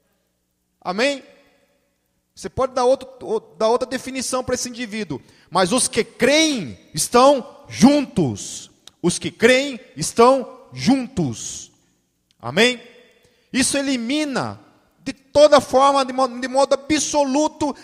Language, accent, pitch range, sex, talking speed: Portuguese, Brazilian, 165-250 Hz, male, 105 wpm